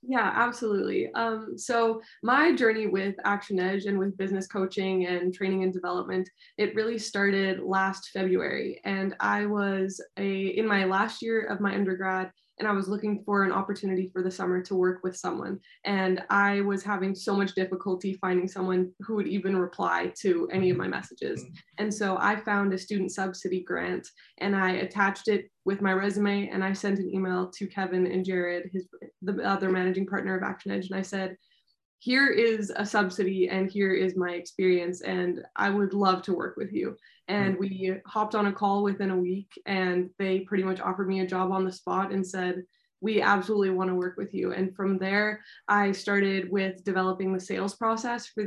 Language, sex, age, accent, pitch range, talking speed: English, female, 20-39, American, 185-200 Hz, 195 wpm